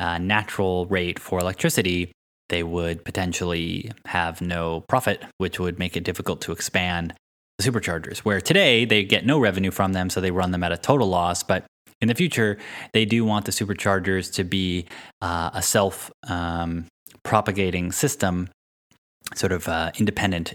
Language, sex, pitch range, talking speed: English, male, 90-105 Hz, 165 wpm